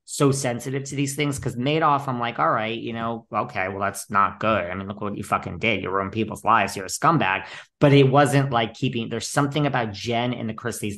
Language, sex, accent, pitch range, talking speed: English, male, American, 115-155 Hz, 240 wpm